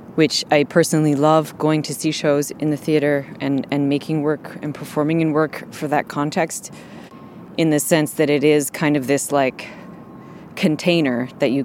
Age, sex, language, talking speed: 20-39, female, French, 180 wpm